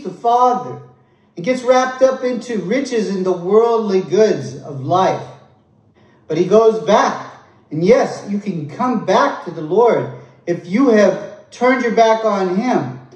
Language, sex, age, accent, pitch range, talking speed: English, male, 40-59, American, 190-260 Hz, 155 wpm